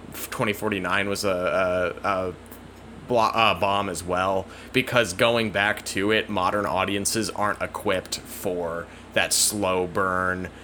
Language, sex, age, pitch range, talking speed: English, male, 20-39, 95-125 Hz, 125 wpm